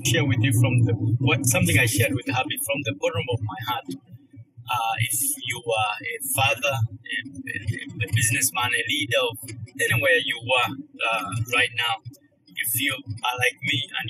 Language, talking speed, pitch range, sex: English, 175 wpm, 120-150 Hz, male